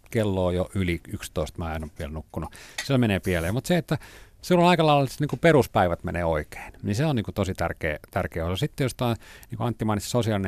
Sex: male